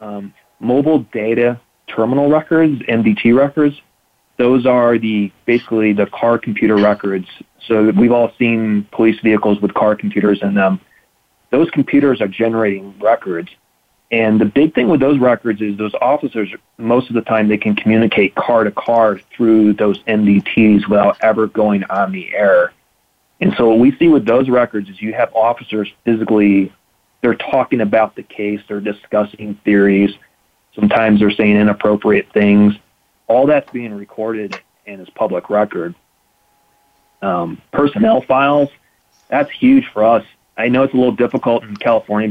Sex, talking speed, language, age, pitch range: male, 155 wpm, English, 30-49, 105-120 Hz